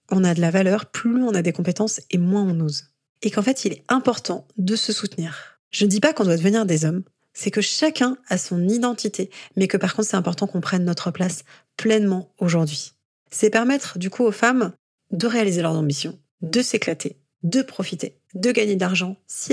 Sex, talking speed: female, 210 wpm